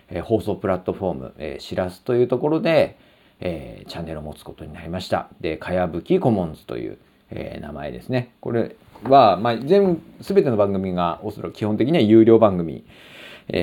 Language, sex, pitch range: Japanese, male, 85-125 Hz